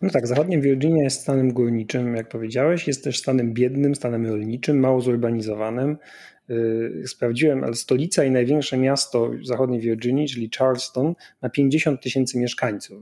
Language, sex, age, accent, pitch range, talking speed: Polish, male, 30-49, native, 115-140 Hz, 150 wpm